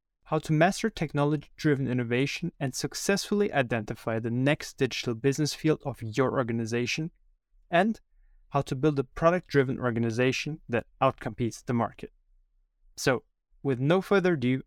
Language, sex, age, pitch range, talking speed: English, male, 20-39, 120-145 Hz, 130 wpm